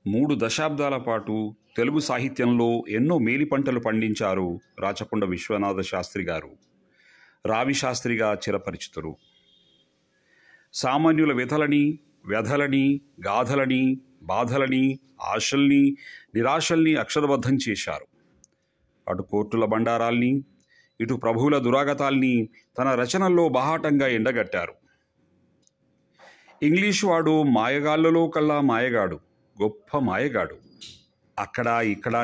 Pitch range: 115-145 Hz